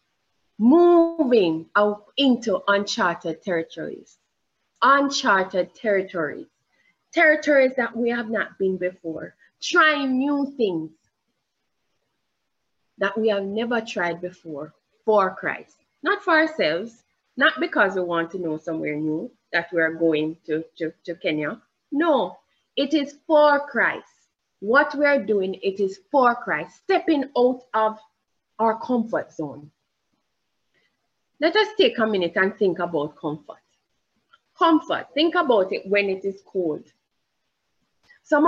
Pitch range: 180-295 Hz